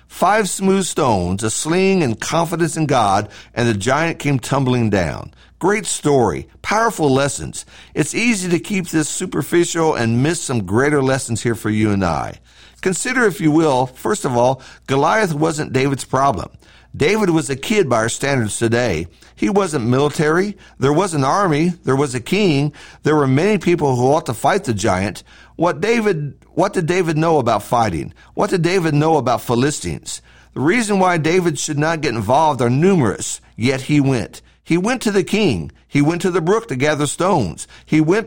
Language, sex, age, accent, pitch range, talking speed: English, male, 50-69, American, 130-185 Hz, 185 wpm